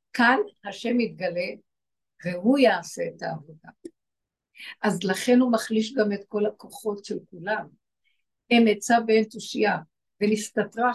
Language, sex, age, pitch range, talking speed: Hebrew, female, 60-79, 215-260 Hz, 120 wpm